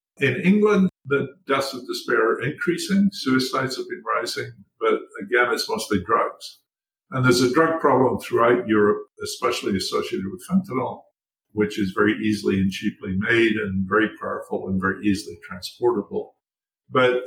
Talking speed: 150 wpm